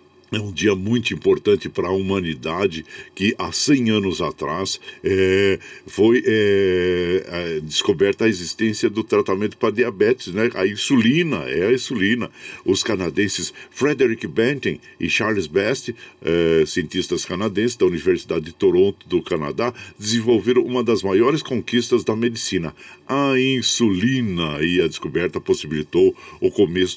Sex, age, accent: male, 60-79, Brazilian